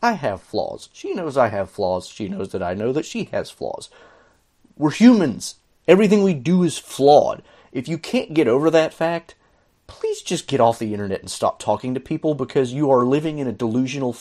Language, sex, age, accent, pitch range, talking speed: English, male, 30-49, American, 105-155 Hz, 205 wpm